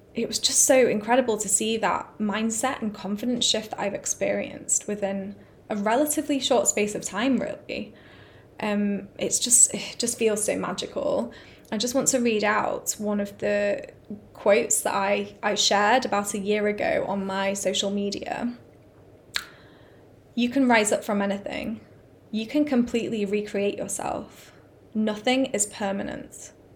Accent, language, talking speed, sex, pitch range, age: British, English, 150 wpm, female, 200-240 Hz, 10-29